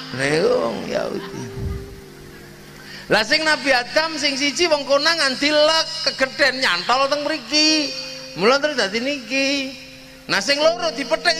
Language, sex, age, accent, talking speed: Indonesian, male, 30-49, native, 115 wpm